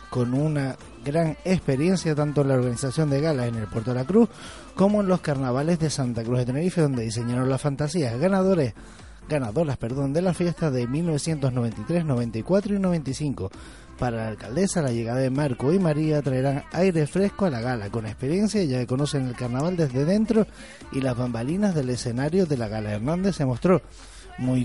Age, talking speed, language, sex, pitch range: 20-39, 185 wpm, Spanish, male, 125-165 Hz